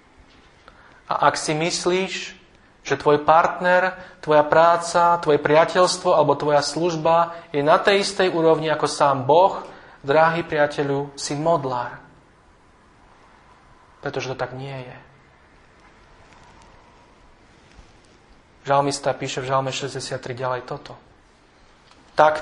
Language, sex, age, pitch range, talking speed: Slovak, male, 40-59, 135-165 Hz, 105 wpm